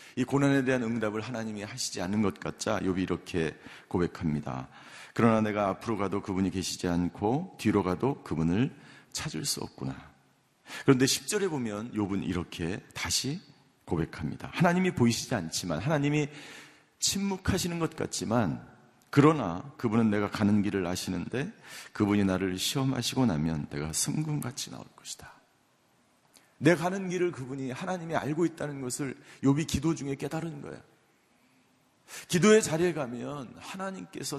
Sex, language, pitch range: male, Korean, 110-155 Hz